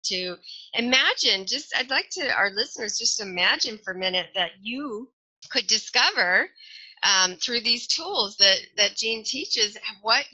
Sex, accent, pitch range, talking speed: female, American, 180-230 Hz, 150 wpm